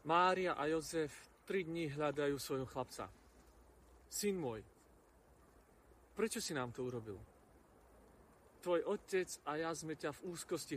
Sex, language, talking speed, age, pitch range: male, Slovak, 130 wpm, 40-59, 115-175 Hz